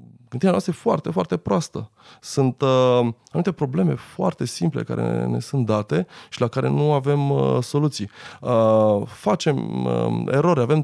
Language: Romanian